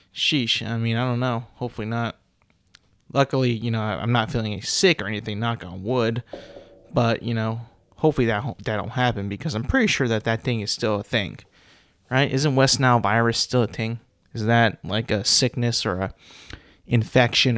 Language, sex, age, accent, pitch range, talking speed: English, male, 30-49, American, 110-130 Hz, 185 wpm